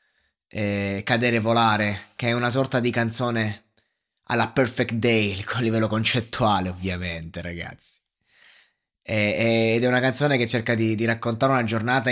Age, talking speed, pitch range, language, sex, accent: 20-39, 155 wpm, 105-130 Hz, Italian, male, native